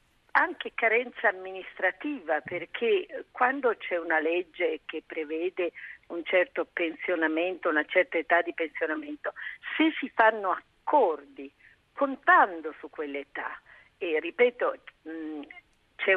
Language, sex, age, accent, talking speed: Italian, female, 50-69, native, 105 wpm